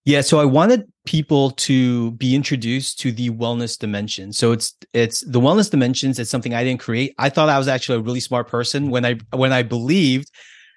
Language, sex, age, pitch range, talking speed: English, male, 30-49, 120-145 Hz, 205 wpm